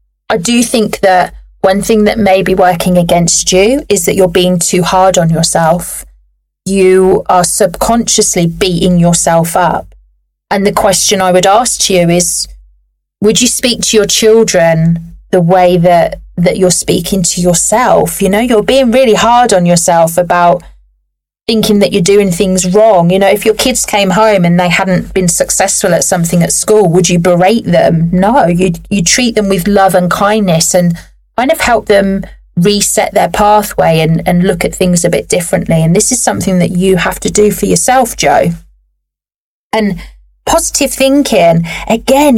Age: 30-49